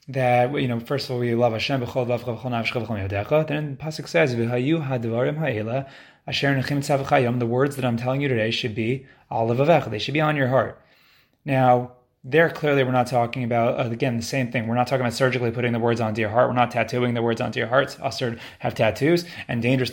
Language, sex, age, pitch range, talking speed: English, male, 20-39, 120-150 Hz, 190 wpm